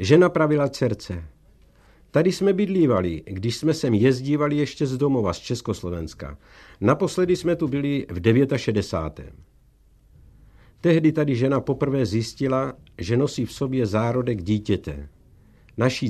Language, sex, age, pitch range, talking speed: Czech, male, 60-79, 105-145 Hz, 125 wpm